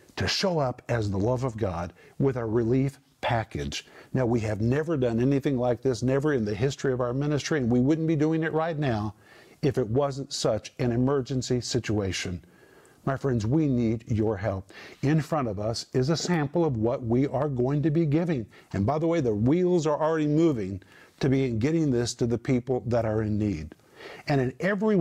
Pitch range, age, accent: 125-165 Hz, 50-69, American